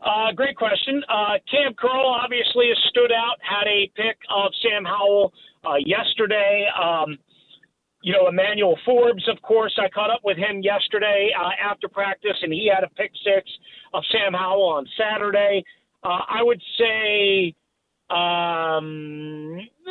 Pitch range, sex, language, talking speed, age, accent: 190-245 Hz, male, English, 150 wpm, 40-59, American